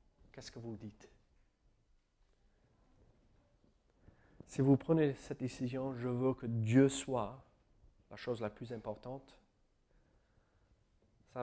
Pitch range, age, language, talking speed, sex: 105-135 Hz, 40-59, French, 105 wpm, male